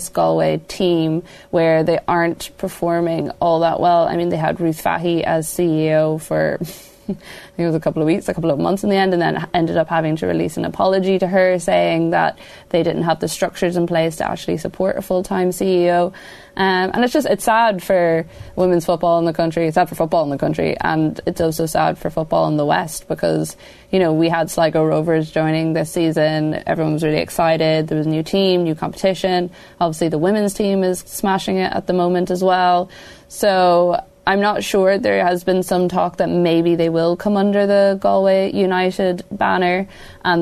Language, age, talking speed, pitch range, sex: English, 20-39, 210 wpm, 165-190 Hz, female